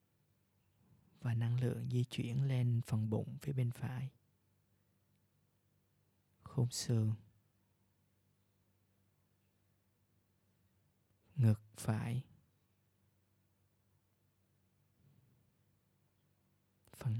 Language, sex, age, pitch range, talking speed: Vietnamese, male, 20-39, 100-125 Hz, 55 wpm